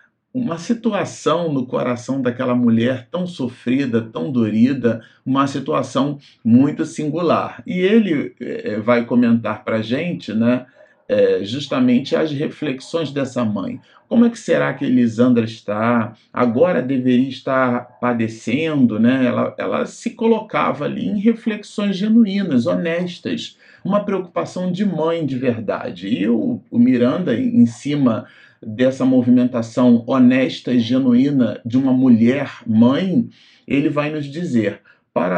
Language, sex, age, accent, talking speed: Portuguese, male, 40-59, Brazilian, 125 wpm